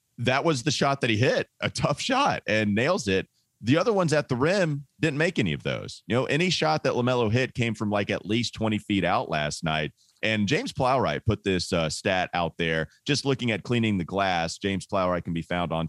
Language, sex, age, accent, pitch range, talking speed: English, male, 30-49, American, 85-125 Hz, 235 wpm